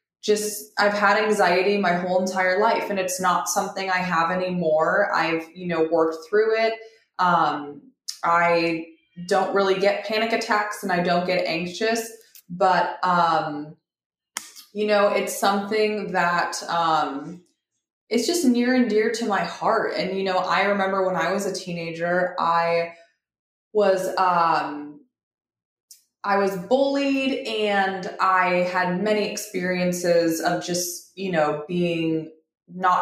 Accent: American